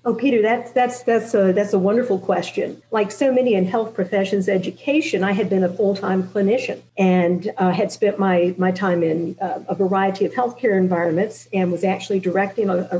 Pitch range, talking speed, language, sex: 190-230 Hz, 200 wpm, English, female